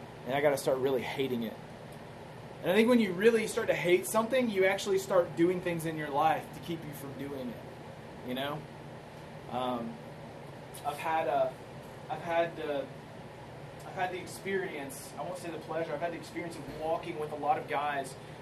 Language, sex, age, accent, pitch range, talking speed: English, male, 20-39, American, 140-180 Hz, 195 wpm